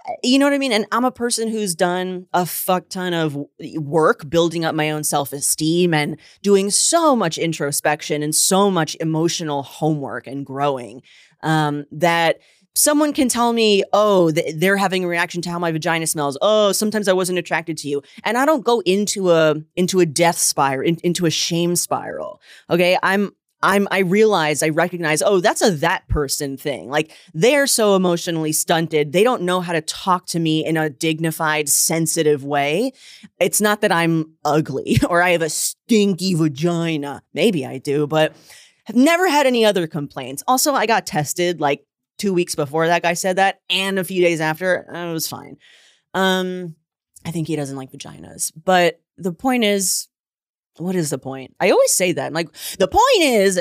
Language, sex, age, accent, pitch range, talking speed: English, female, 20-39, American, 155-195 Hz, 185 wpm